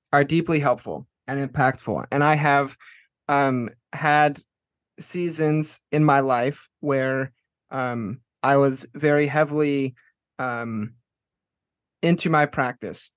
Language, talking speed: English, 110 wpm